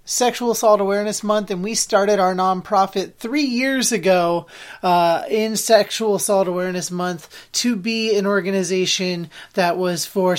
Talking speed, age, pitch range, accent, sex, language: 145 wpm, 30-49, 180-215 Hz, American, male, English